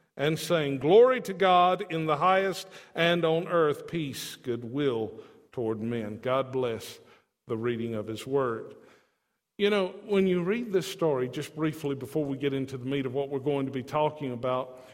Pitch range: 145-200 Hz